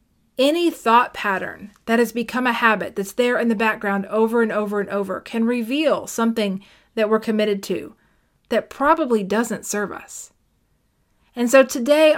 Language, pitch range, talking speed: English, 210-265 Hz, 165 wpm